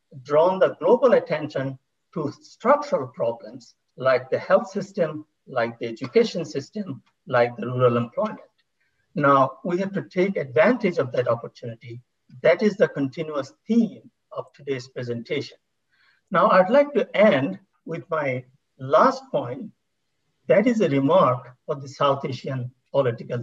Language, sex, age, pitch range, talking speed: English, male, 60-79, 130-195 Hz, 140 wpm